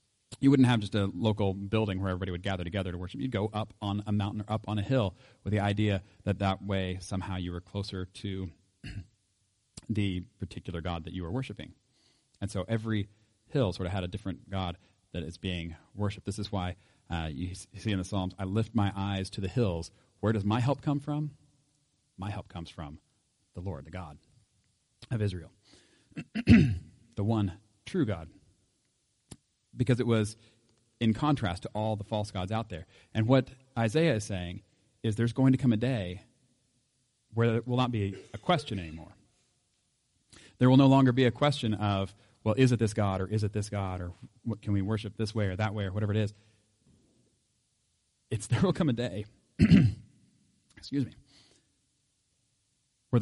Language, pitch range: English, 95-120 Hz